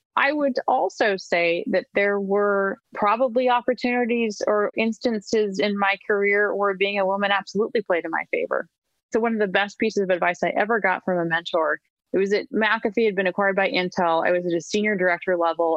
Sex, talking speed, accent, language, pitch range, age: female, 200 wpm, American, English, 175-230 Hz, 30-49